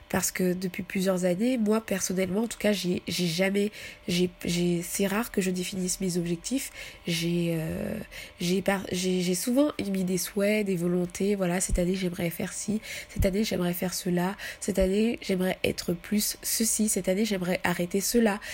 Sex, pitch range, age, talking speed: female, 180-215 Hz, 20-39, 180 wpm